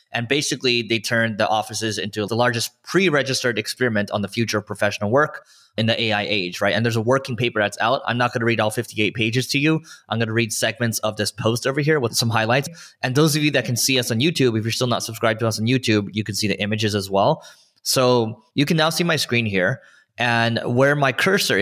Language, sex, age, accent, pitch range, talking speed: English, male, 20-39, American, 110-130 Hz, 250 wpm